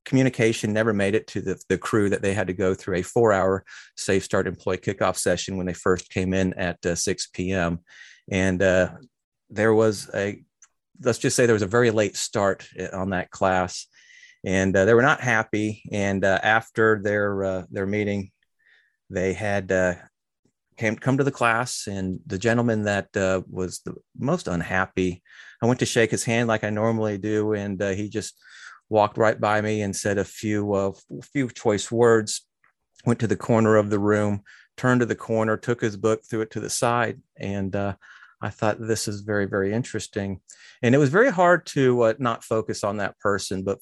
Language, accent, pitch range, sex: English, American, 95-115 Hz, male